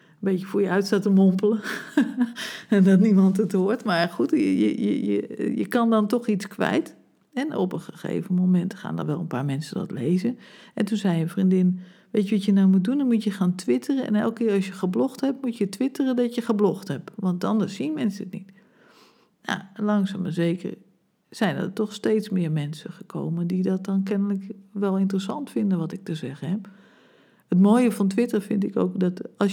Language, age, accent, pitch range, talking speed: Dutch, 50-69, Dutch, 190-220 Hz, 215 wpm